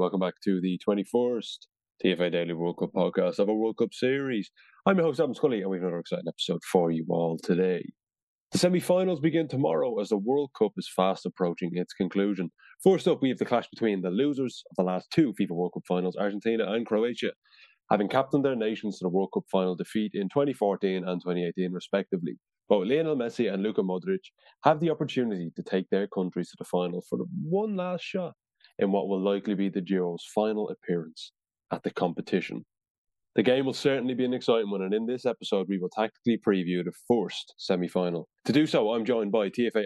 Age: 20-39